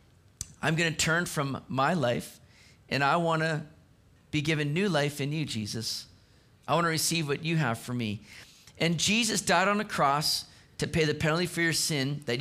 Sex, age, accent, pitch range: male, 40-59, American, 120-160 Hz